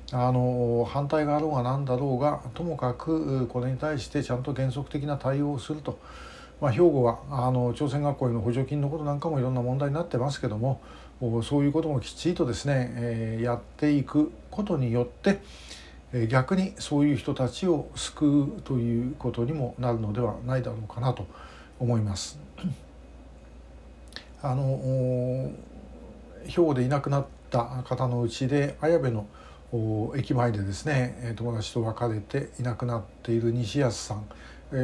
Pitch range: 115-145 Hz